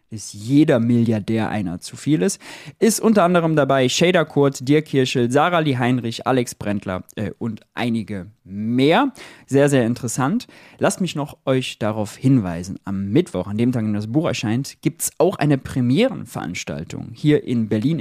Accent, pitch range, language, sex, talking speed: German, 115-160 Hz, German, male, 165 wpm